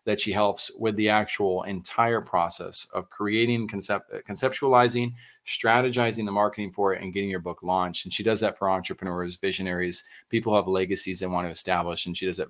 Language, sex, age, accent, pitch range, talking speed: English, male, 30-49, American, 90-110 Hz, 190 wpm